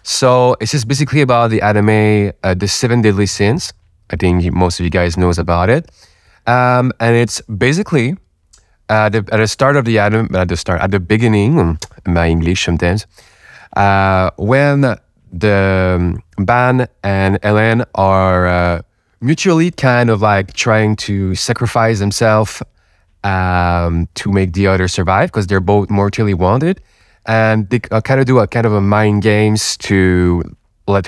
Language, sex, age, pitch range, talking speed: English, male, 20-39, 90-115 Hz, 160 wpm